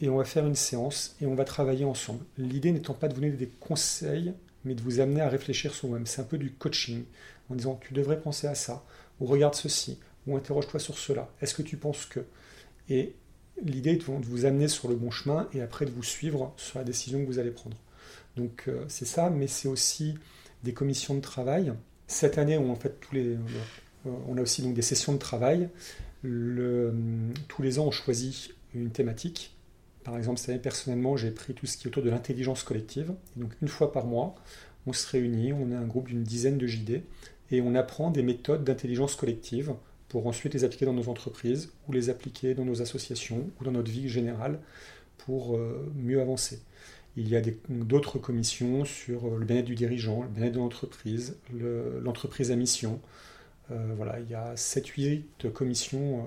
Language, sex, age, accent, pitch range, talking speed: French, male, 40-59, French, 120-140 Hz, 195 wpm